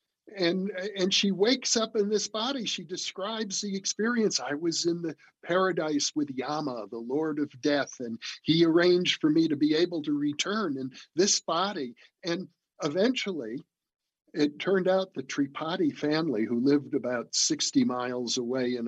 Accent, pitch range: American, 150-210 Hz